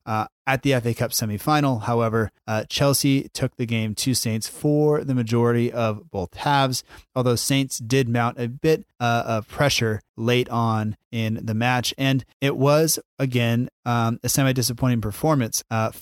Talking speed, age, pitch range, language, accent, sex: 160 wpm, 30-49, 115-140 Hz, English, American, male